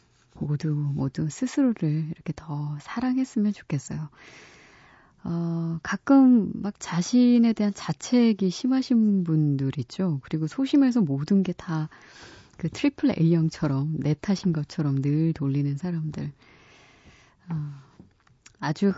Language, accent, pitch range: Korean, native, 145-195 Hz